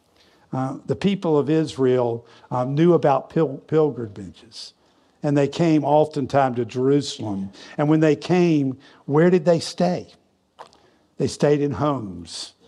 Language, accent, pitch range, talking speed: English, American, 120-150 Hz, 135 wpm